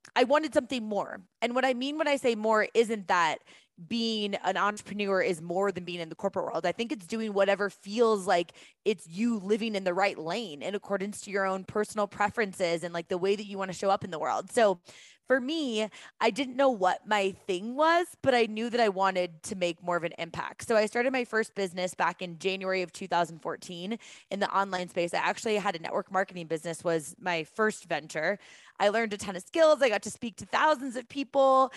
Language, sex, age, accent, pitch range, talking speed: English, female, 20-39, American, 185-235 Hz, 230 wpm